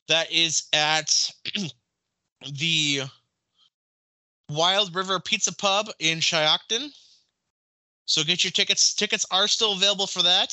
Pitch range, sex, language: 140-185 Hz, male, English